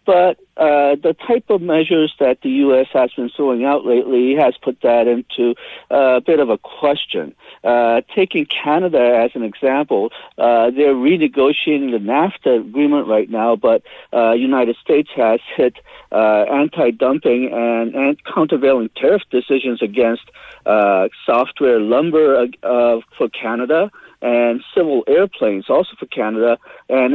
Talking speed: 140 wpm